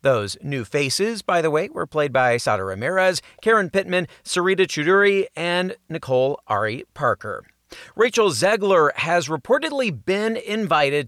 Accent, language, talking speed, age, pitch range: American, English, 135 wpm, 40-59, 130-180 Hz